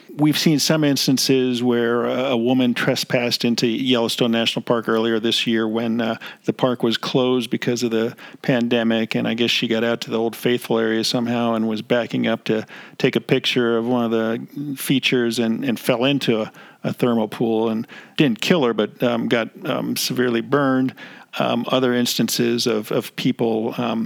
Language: English